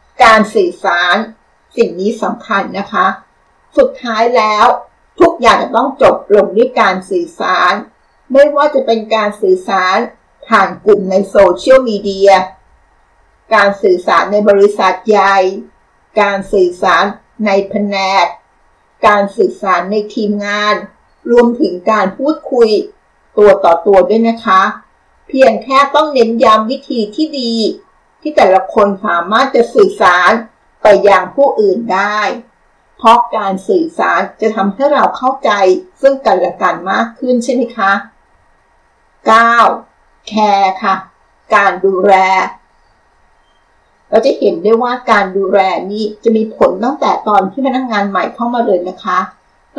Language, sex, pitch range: Thai, female, 195-260 Hz